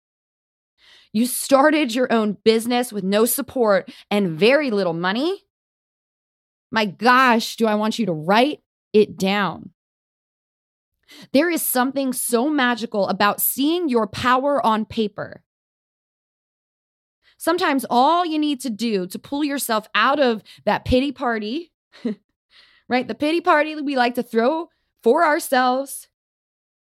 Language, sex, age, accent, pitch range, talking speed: English, female, 20-39, American, 205-280 Hz, 130 wpm